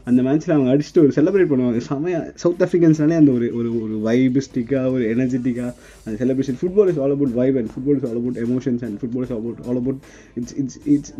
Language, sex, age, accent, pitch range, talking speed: Tamil, male, 20-39, native, 120-145 Hz, 190 wpm